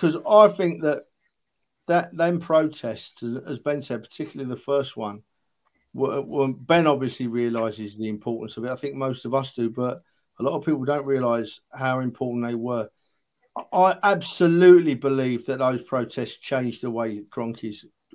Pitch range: 125-155 Hz